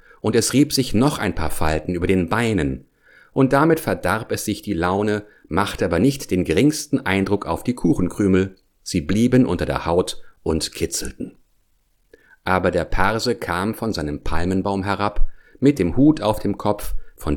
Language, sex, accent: English, male, German